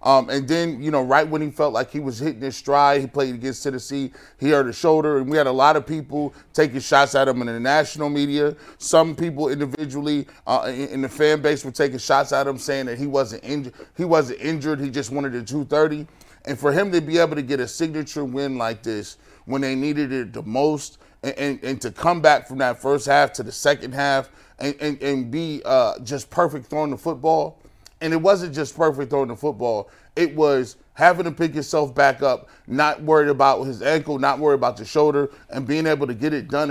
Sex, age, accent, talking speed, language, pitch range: male, 30-49, American, 230 wpm, English, 135-155 Hz